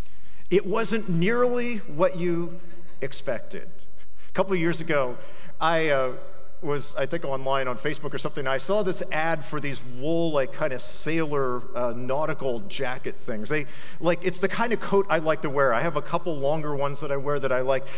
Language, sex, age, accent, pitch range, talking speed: English, male, 50-69, American, 165-210 Hz, 200 wpm